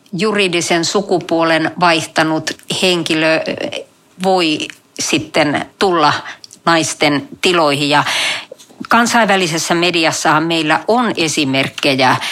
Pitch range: 150-200 Hz